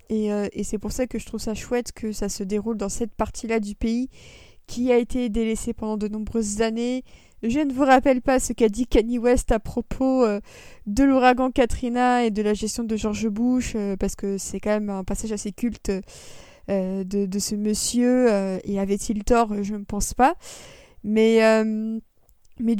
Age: 20-39